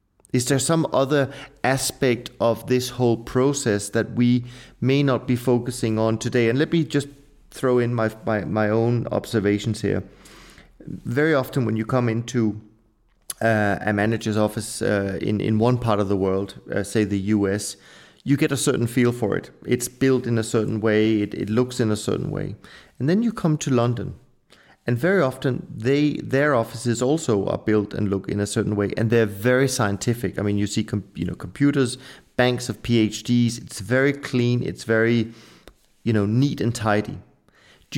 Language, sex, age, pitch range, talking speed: English, male, 30-49, 105-130 Hz, 185 wpm